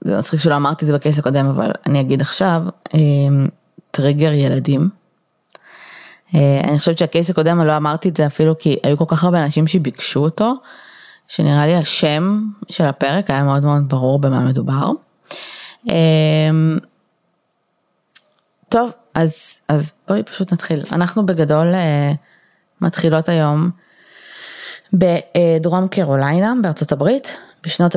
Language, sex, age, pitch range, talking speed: Hebrew, female, 20-39, 145-180 Hz, 120 wpm